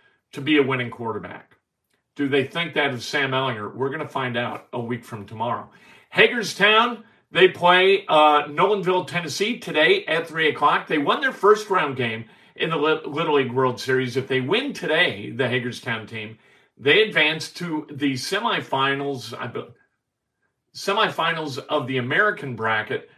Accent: American